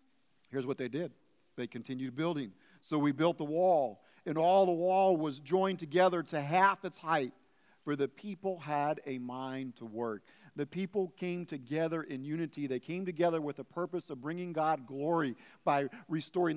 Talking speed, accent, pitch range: 175 wpm, American, 160-200 Hz